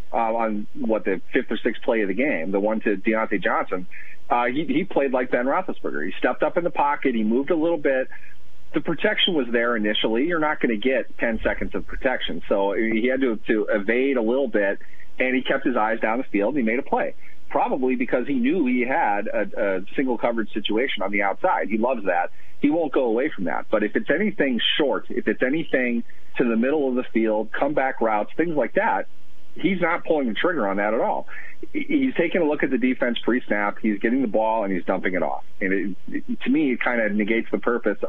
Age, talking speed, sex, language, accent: 40-59, 230 wpm, male, English, American